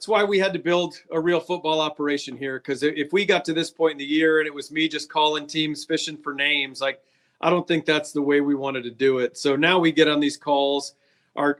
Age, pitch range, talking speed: 40-59, 145-165 Hz, 265 wpm